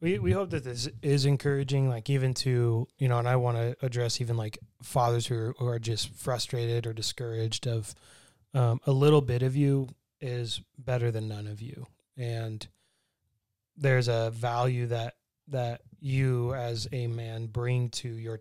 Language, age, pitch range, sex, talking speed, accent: English, 20-39, 115-130 Hz, male, 175 wpm, American